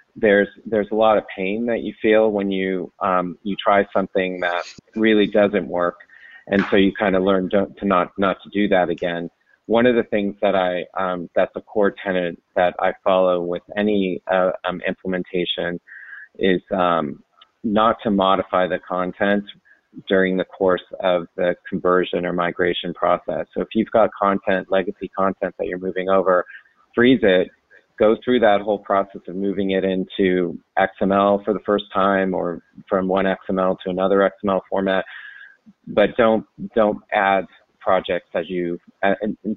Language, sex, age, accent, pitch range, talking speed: English, male, 30-49, American, 90-100 Hz, 170 wpm